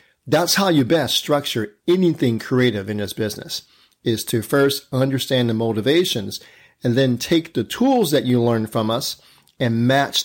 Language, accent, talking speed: English, American, 165 wpm